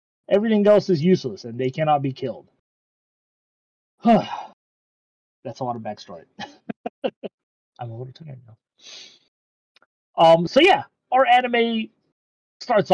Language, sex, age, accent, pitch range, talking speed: English, male, 30-49, American, 135-180 Hz, 115 wpm